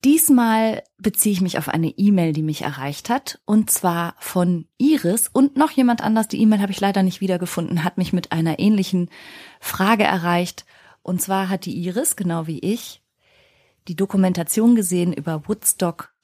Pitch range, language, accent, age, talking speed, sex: 175-215 Hz, German, German, 30-49, 170 wpm, female